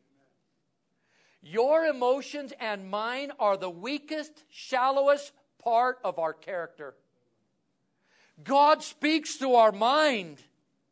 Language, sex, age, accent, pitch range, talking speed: English, male, 60-79, American, 225-290 Hz, 95 wpm